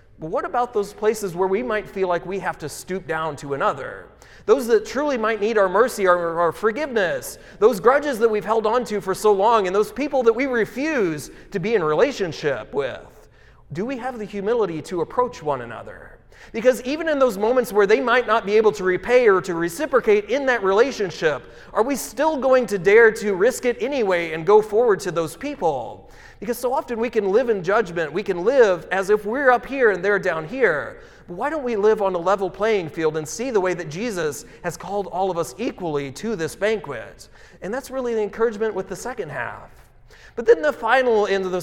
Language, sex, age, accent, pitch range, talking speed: English, male, 30-49, American, 190-260 Hz, 220 wpm